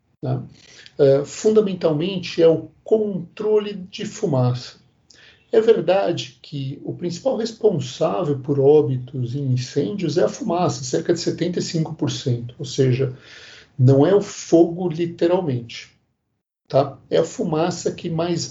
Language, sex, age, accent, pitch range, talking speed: Portuguese, male, 50-69, Brazilian, 130-170 Hz, 115 wpm